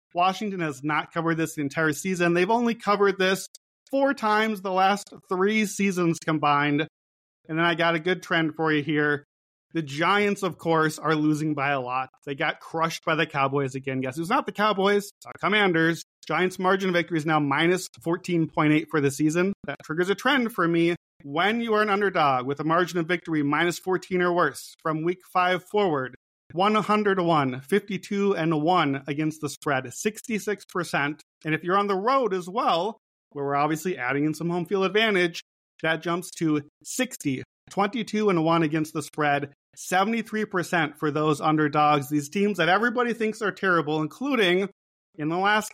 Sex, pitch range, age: male, 150-195 Hz, 30-49